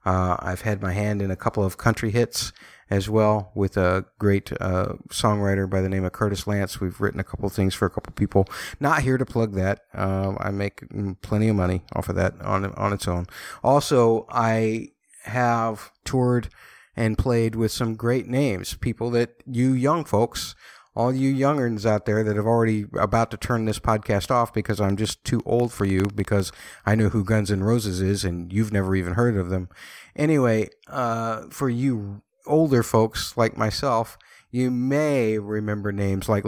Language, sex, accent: English, male, American